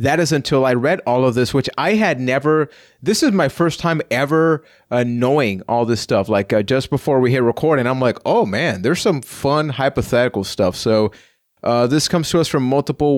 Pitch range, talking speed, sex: 120-155 Hz, 215 wpm, male